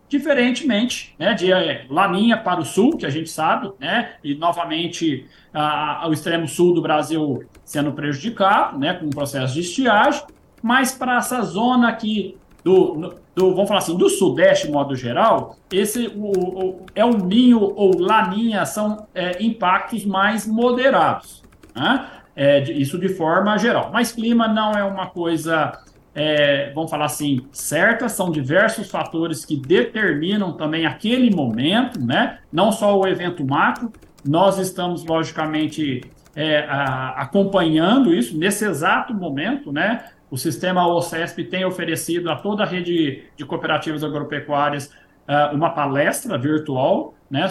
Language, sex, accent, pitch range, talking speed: Portuguese, male, Brazilian, 150-210 Hz, 135 wpm